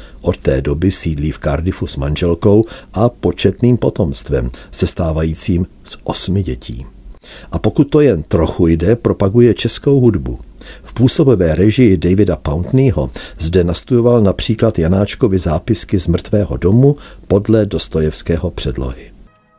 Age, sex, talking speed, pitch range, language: 50-69, male, 125 wpm, 85-115 Hz, Czech